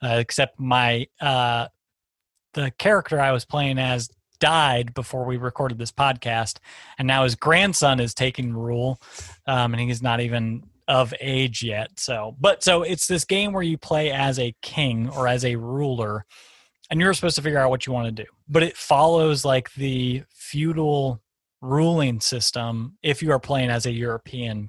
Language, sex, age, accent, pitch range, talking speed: English, male, 30-49, American, 120-145 Hz, 175 wpm